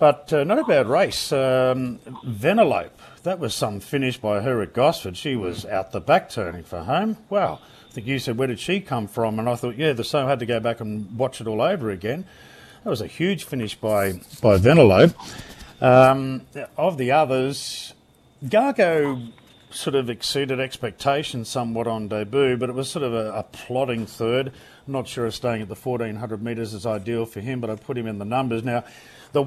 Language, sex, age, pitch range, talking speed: English, male, 40-59, 115-135 Hz, 205 wpm